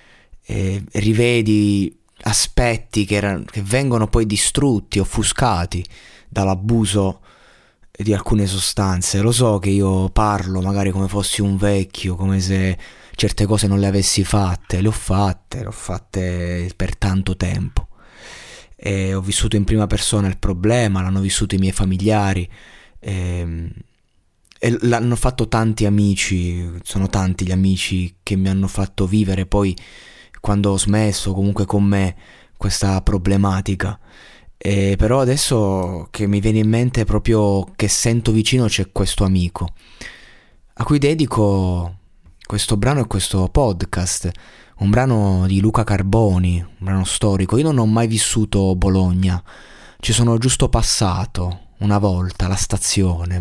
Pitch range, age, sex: 95-110 Hz, 20-39, male